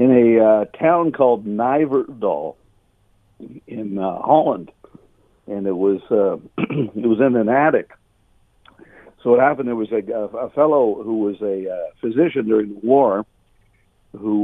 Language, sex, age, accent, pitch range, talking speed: English, male, 60-79, American, 100-120 Hz, 145 wpm